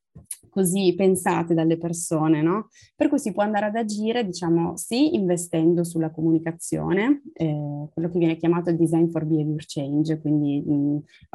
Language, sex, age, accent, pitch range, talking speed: Italian, female, 20-39, native, 155-180 Hz, 155 wpm